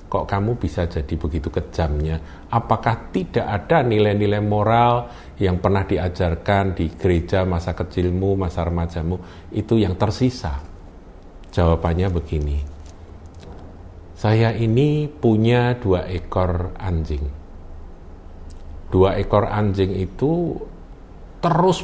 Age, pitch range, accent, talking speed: 50-69, 80-105 Hz, native, 100 wpm